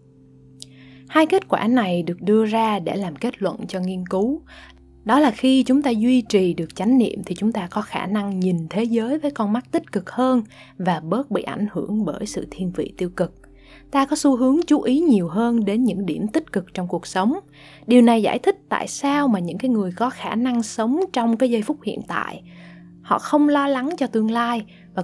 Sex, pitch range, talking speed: female, 180-250 Hz, 225 wpm